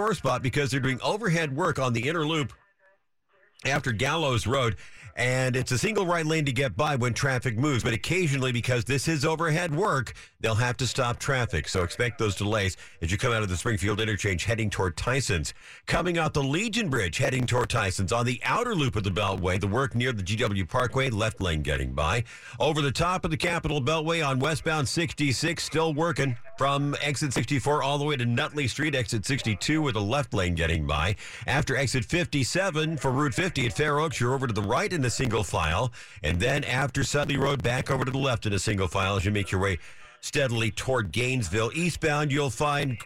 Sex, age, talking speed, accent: male, 50-69, 210 wpm, American